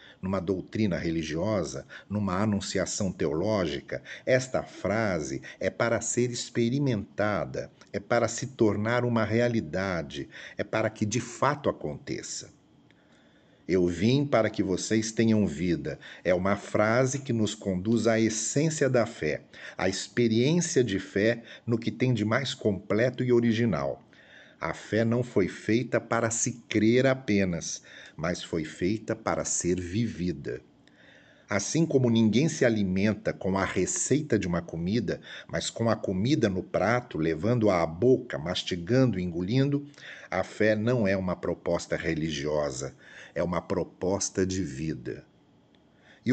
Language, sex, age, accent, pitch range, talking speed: Portuguese, male, 50-69, Brazilian, 95-120 Hz, 135 wpm